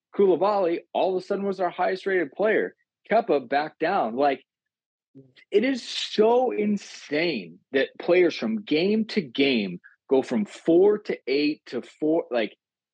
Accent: American